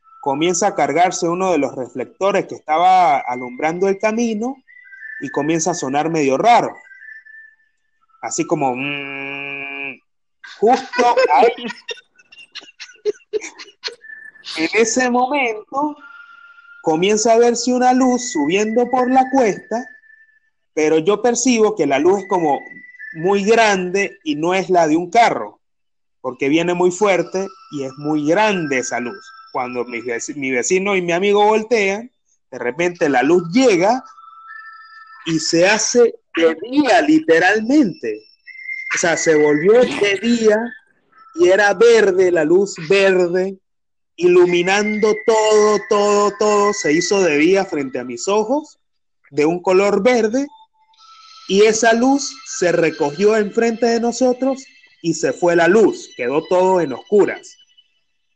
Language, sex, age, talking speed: Spanish, male, 30-49, 130 wpm